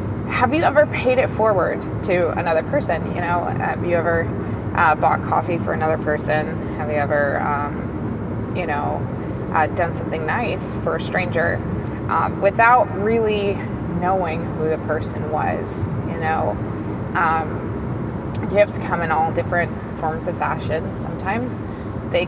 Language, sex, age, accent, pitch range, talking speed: English, female, 20-39, American, 135-205 Hz, 145 wpm